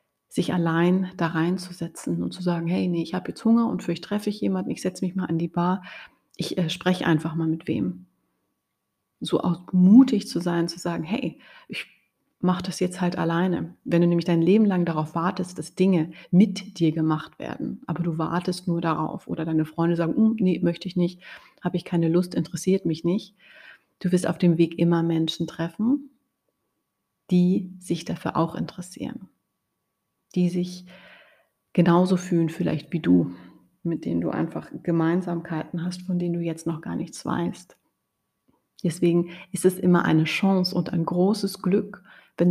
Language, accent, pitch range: German, German, 170-185 Hz